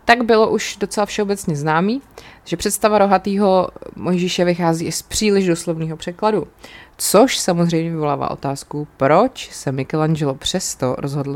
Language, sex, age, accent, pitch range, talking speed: Czech, female, 20-39, native, 160-195 Hz, 130 wpm